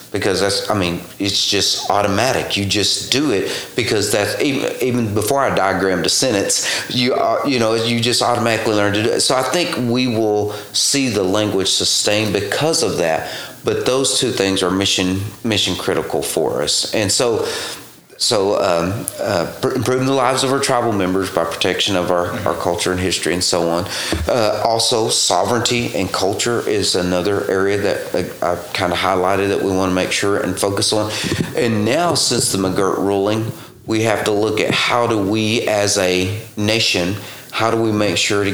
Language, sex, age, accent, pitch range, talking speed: English, male, 40-59, American, 95-115 Hz, 185 wpm